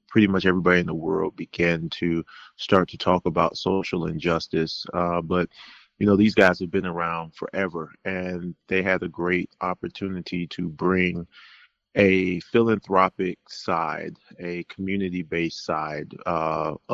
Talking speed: 140 wpm